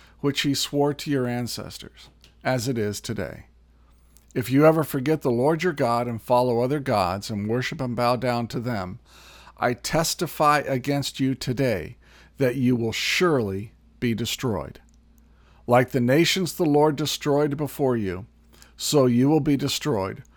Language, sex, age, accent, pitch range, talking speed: English, male, 50-69, American, 110-150 Hz, 155 wpm